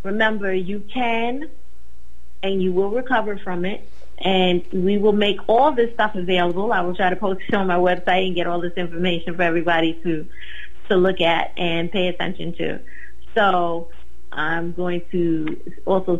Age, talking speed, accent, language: 30-49, 170 wpm, American, English